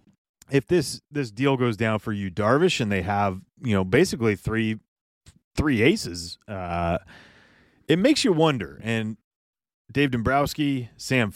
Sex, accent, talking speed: male, American, 145 wpm